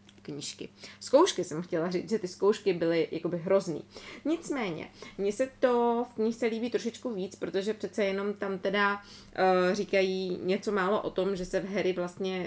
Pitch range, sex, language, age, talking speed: 170-205 Hz, female, Czech, 20-39, 175 wpm